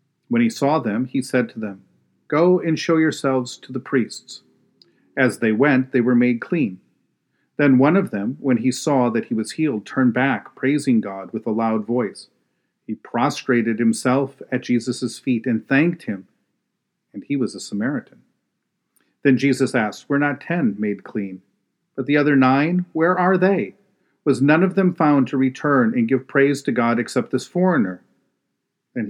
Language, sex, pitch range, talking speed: English, male, 110-155 Hz, 175 wpm